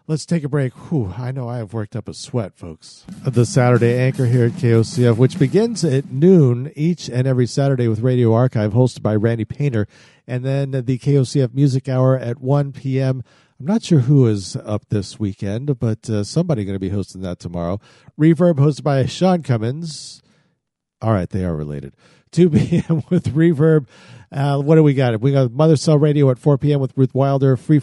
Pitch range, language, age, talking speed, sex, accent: 115-145 Hz, English, 50-69, 200 wpm, male, American